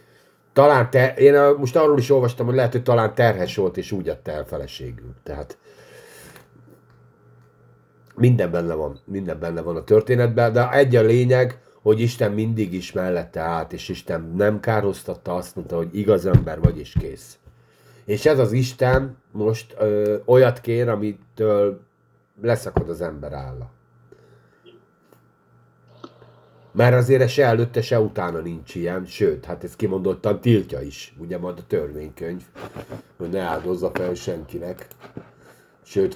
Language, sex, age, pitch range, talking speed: Hungarian, male, 50-69, 85-125 Hz, 145 wpm